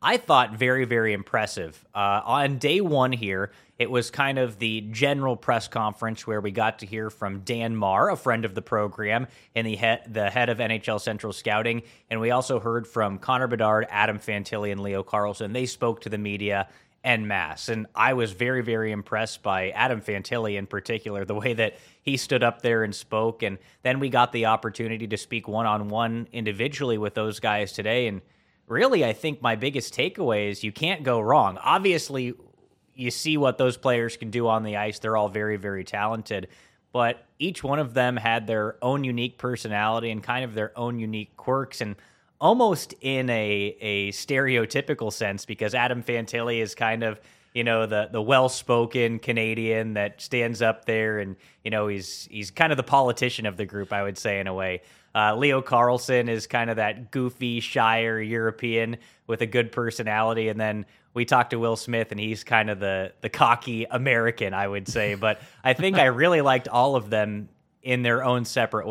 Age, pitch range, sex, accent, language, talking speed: 20-39, 105-125 Hz, male, American, English, 195 wpm